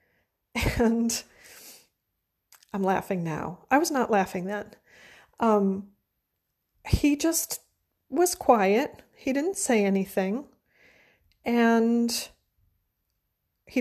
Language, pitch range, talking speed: English, 195-255 Hz, 85 wpm